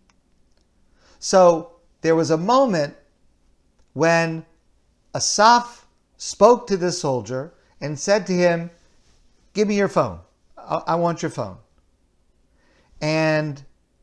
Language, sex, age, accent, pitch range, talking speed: English, male, 50-69, American, 135-190 Hz, 105 wpm